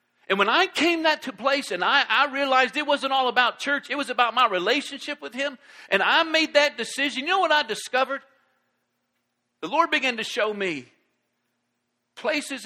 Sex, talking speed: male, 190 wpm